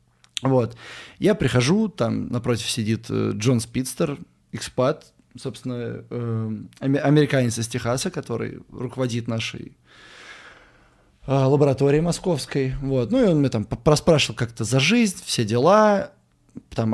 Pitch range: 115-150 Hz